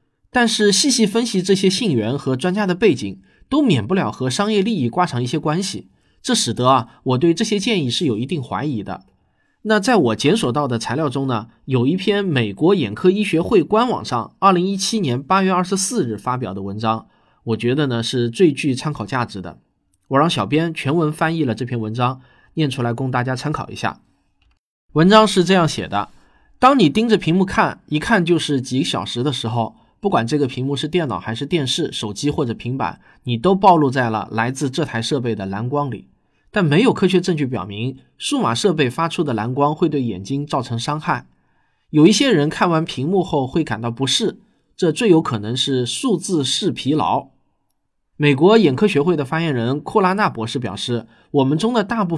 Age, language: 20-39, Chinese